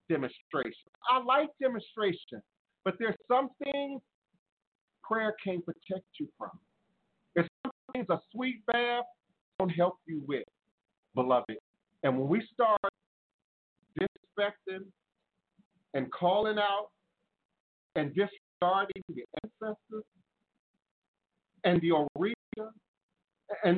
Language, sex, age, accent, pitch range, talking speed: English, male, 50-69, American, 170-235 Hz, 100 wpm